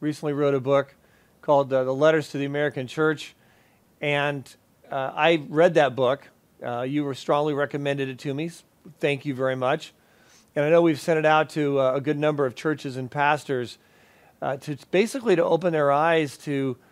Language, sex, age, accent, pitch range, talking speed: English, male, 40-59, American, 140-165 Hz, 190 wpm